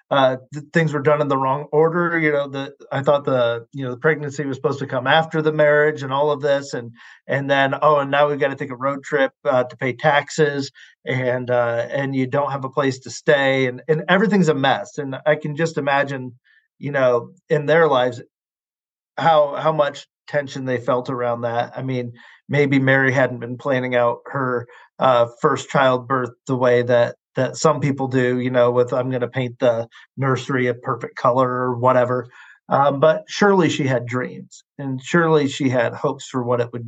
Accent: American